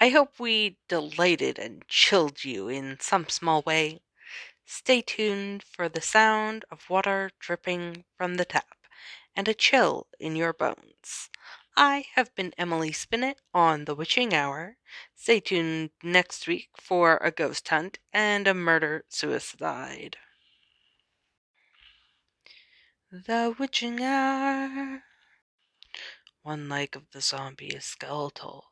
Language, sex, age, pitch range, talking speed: English, female, 20-39, 155-220 Hz, 125 wpm